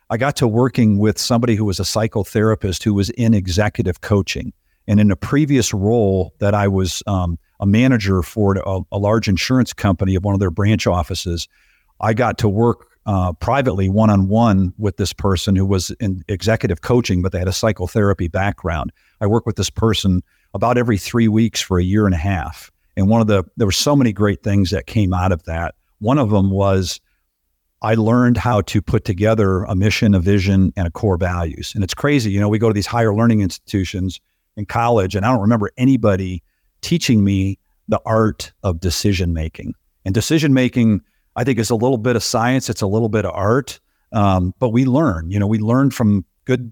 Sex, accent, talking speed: male, American, 210 wpm